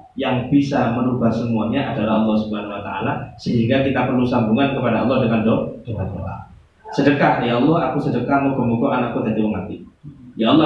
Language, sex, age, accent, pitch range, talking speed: Indonesian, male, 20-39, native, 110-145 Hz, 160 wpm